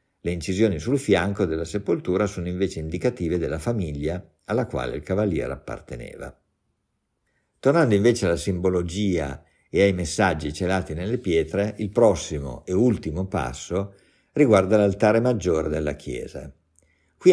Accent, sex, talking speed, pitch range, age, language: native, male, 130 wpm, 80-100 Hz, 50-69, Italian